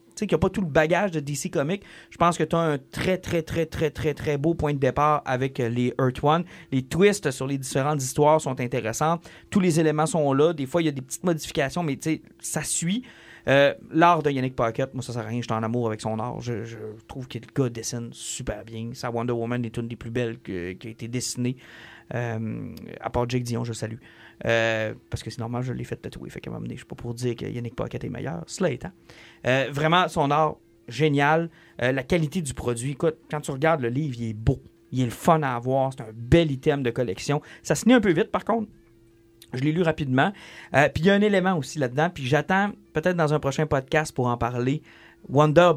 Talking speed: 250 wpm